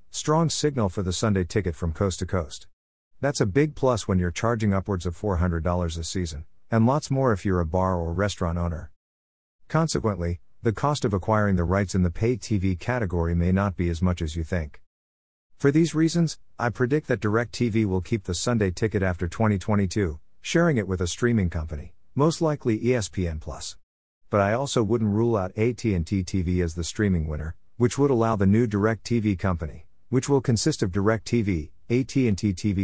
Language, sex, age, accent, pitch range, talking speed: English, male, 50-69, American, 90-120 Hz, 190 wpm